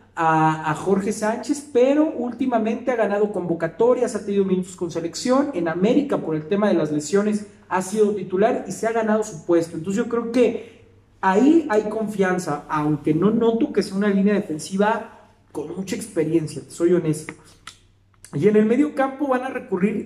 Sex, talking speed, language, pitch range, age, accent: male, 180 wpm, Spanish, 165-215 Hz, 40-59, Mexican